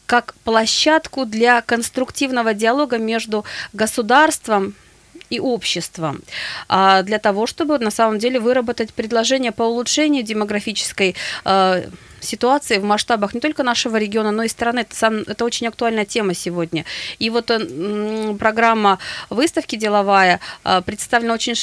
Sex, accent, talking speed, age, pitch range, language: female, native, 120 wpm, 20-39, 195-240 Hz, Russian